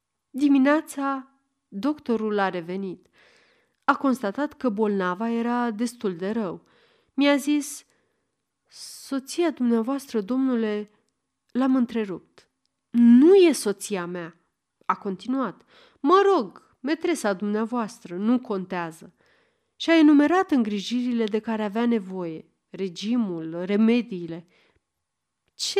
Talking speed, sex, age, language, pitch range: 95 wpm, female, 30-49, Romanian, 200-285 Hz